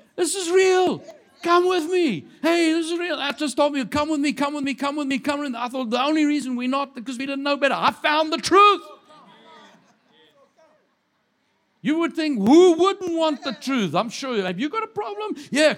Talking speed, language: 220 wpm, English